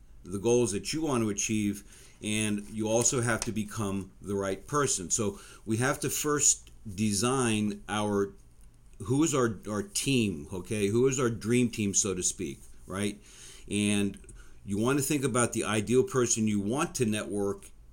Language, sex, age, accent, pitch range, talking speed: English, male, 50-69, American, 100-120 Hz, 170 wpm